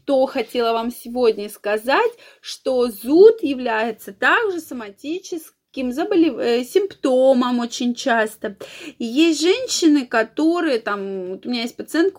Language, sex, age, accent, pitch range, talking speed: Russian, female, 20-39, native, 235-335 Hz, 120 wpm